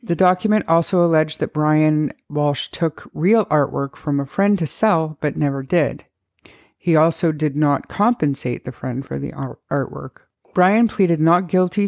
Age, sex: 50-69, female